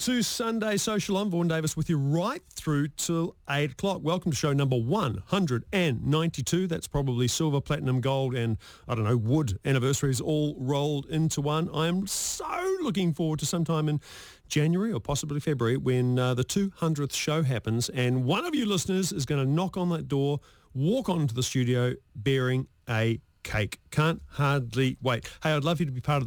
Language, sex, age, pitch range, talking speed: English, male, 40-59, 125-175 Hz, 185 wpm